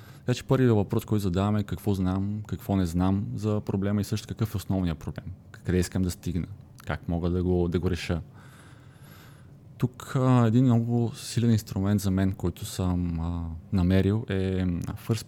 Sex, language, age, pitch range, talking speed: male, Bulgarian, 20-39, 90-115 Hz, 175 wpm